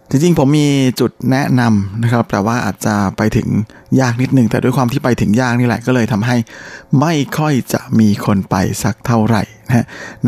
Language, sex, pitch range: Thai, male, 110-130 Hz